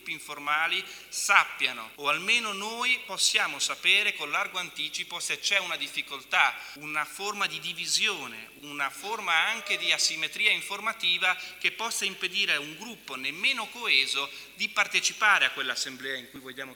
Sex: male